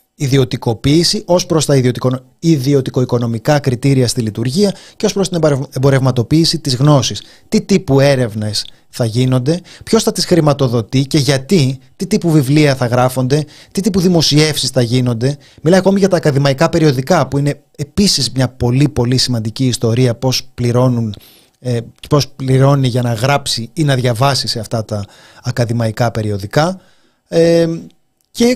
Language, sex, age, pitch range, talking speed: Greek, male, 30-49, 125-165 Hz, 140 wpm